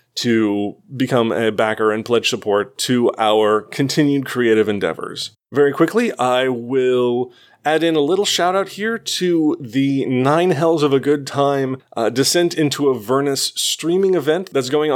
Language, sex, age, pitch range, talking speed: English, male, 30-49, 125-155 Hz, 160 wpm